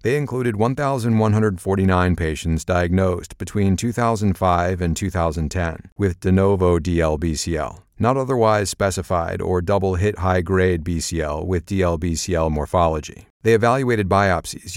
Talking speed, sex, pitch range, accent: 115 wpm, male, 85-105 Hz, American